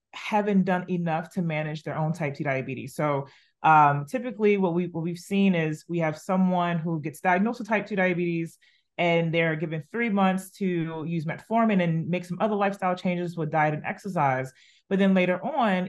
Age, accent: 30-49, American